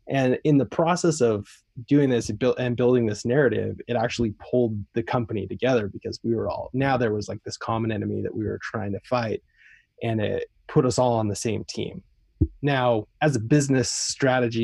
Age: 20-39